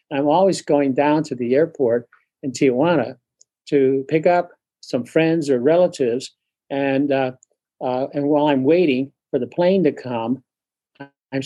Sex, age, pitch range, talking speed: male, 50-69, 130-150 Hz, 150 wpm